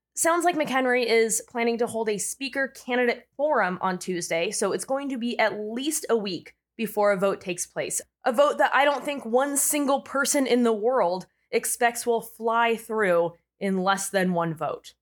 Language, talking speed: English, 190 wpm